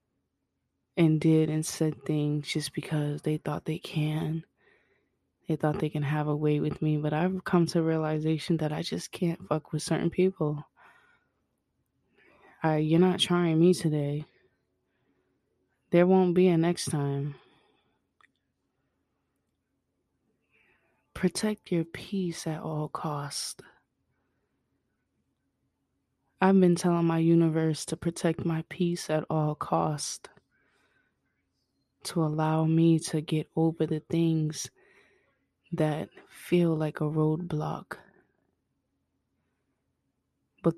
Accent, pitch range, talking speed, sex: American, 155-170 Hz, 110 wpm, female